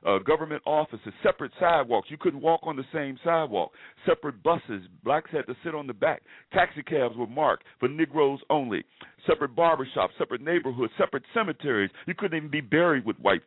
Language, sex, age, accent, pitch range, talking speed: English, male, 50-69, American, 130-165 Hz, 180 wpm